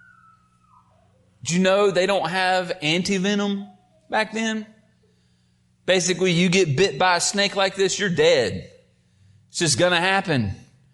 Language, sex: English, male